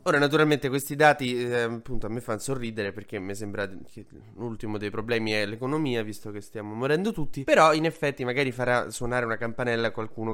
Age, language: 20-39, Italian